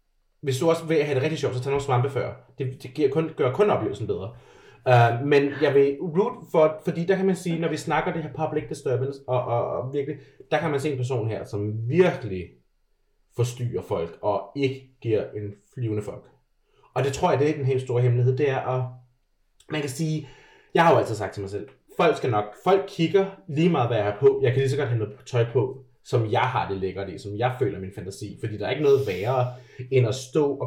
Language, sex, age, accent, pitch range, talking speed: Danish, male, 30-49, native, 120-155 Hz, 240 wpm